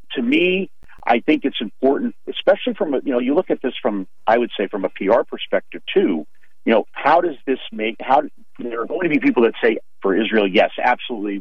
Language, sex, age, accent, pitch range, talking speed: English, male, 50-69, American, 100-135 Hz, 220 wpm